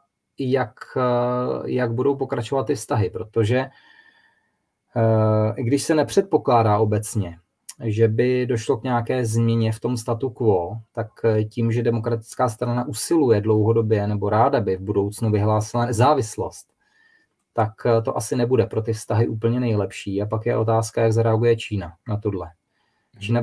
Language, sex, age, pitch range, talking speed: Czech, male, 20-39, 110-125 Hz, 140 wpm